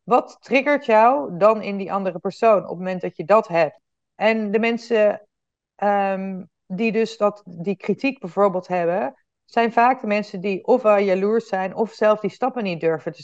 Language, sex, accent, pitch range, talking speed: Dutch, female, Dutch, 180-225 Hz, 185 wpm